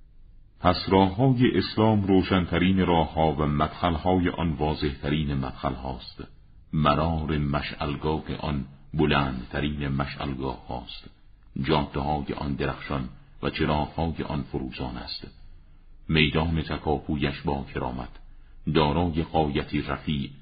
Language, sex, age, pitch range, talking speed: Persian, male, 50-69, 70-90 Hz, 90 wpm